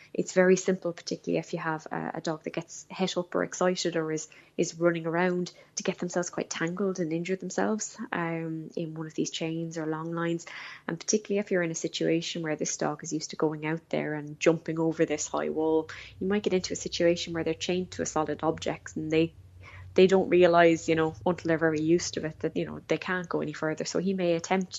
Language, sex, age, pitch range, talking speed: English, female, 10-29, 155-185 Hz, 235 wpm